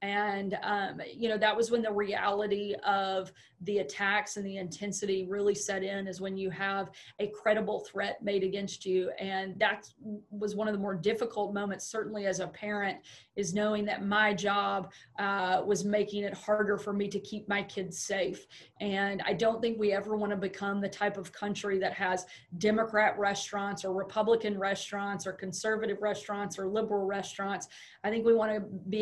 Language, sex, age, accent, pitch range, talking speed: English, female, 30-49, American, 195-210 Hz, 180 wpm